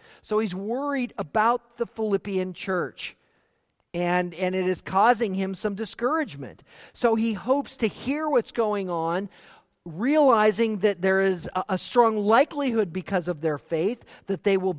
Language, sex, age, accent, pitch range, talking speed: English, male, 50-69, American, 180-235 Hz, 155 wpm